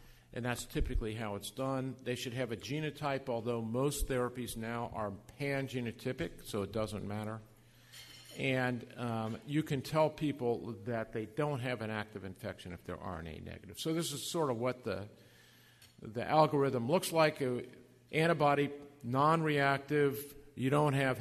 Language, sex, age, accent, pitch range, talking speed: English, male, 50-69, American, 115-145 Hz, 160 wpm